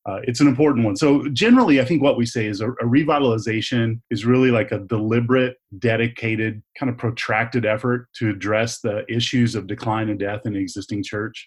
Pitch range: 110-130 Hz